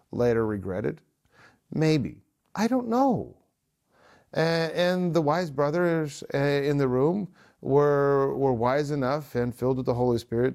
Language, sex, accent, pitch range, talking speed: English, male, American, 115-150 Hz, 130 wpm